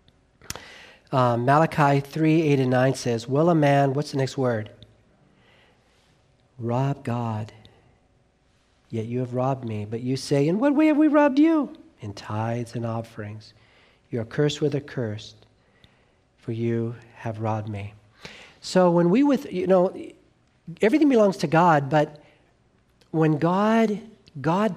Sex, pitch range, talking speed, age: male, 120-175 Hz, 145 wpm, 50-69